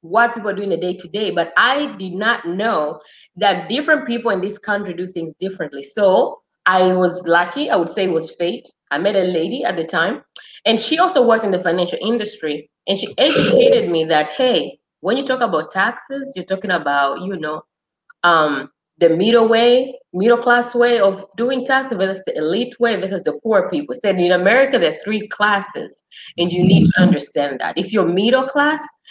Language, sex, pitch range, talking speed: English, female, 180-245 Hz, 200 wpm